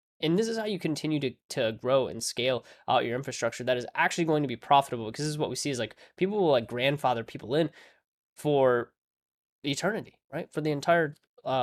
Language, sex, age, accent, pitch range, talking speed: English, male, 10-29, American, 115-155 Hz, 215 wpm